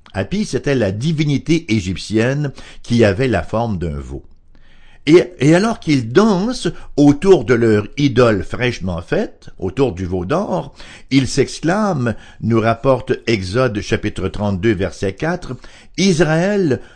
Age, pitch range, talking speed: 60-79, 95-130 Hz, 125 wpm